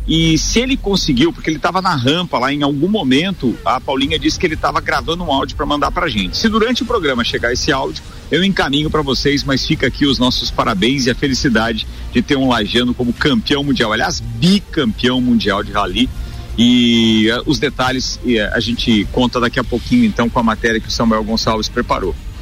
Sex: male